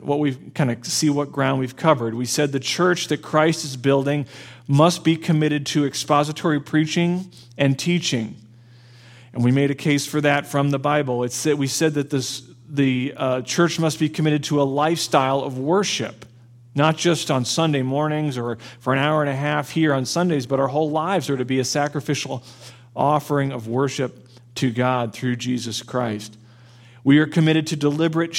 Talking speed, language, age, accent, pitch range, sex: 190 wpm, English, 40-59, American, 125-150 Hz, male